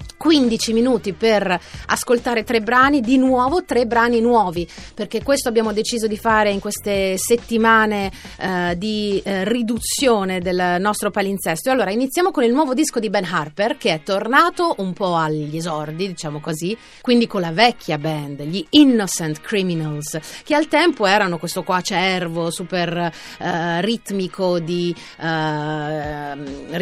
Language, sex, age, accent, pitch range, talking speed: Italian, female, 30-49, native, 175-230 Hz, 145 wpm